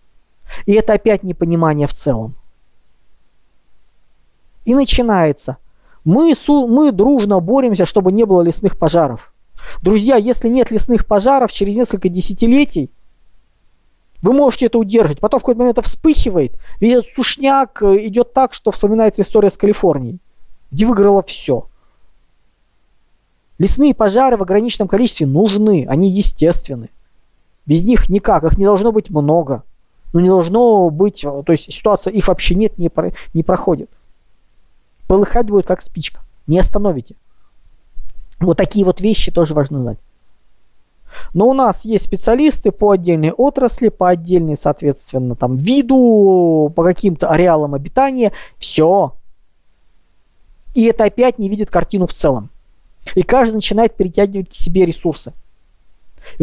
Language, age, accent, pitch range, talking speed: Russian, 20-39, native, 160-230 Hz, 130 wpm